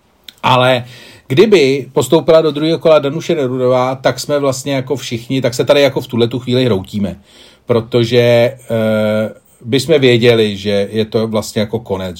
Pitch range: 115-145 Hz